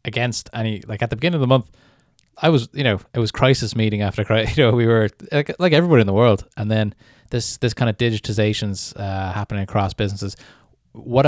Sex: male